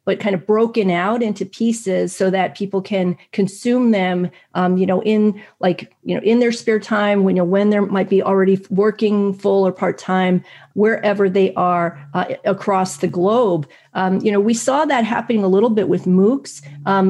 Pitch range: 190-220 Hz